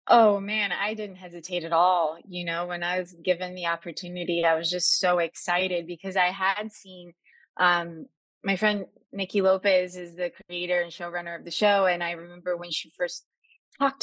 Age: 20-39